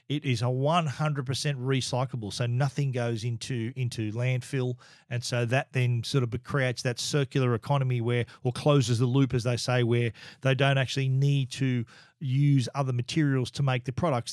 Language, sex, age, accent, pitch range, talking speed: English, male, 40-59, Australian, 125-145 Hz, 175 wpm